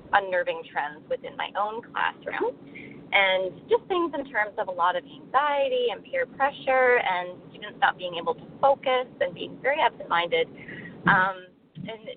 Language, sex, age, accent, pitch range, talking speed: English, female, 20-39, American, 185-285 Hz, 155 wpm